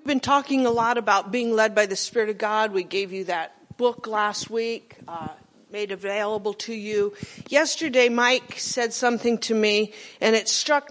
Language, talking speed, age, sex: English, 185 wpm, 50-69, female